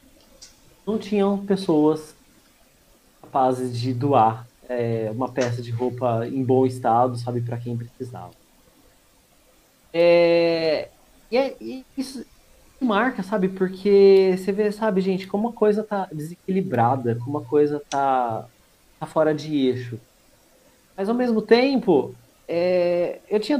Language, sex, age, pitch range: Portuguese, male, 30-49, 135-200 Hz